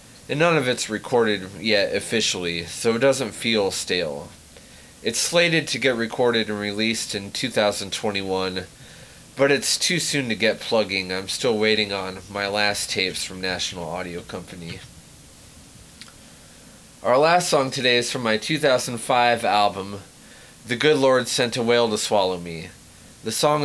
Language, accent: English, American